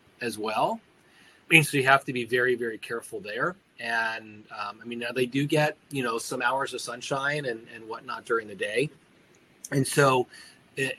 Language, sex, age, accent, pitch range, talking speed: English, male, 30-49, American, 120-140 Hz, 195 wpm